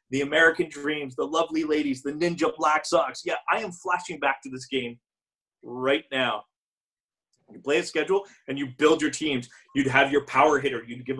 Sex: male